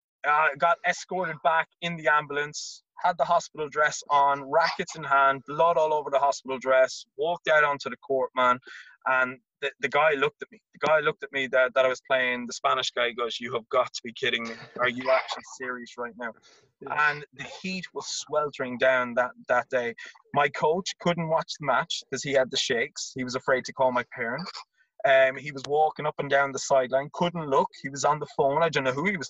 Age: 20-39